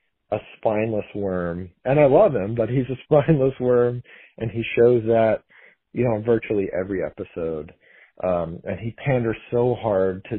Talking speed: 160 wpm